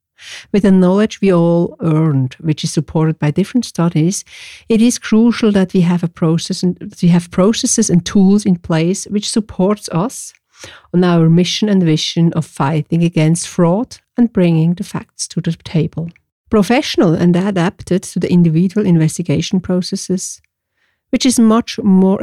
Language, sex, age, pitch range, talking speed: English, female, 60-79, 170-210 Hz, 160 wpm